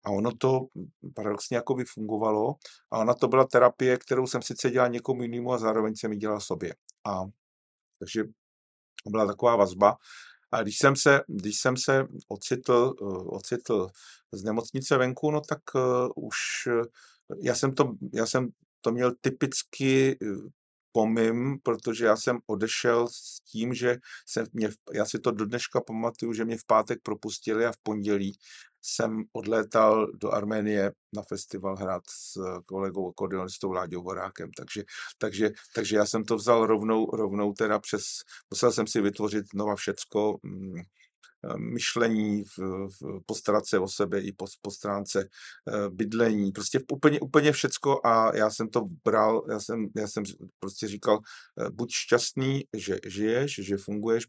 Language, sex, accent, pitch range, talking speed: Czech, male, native, 100-125 Hz, 155 wpm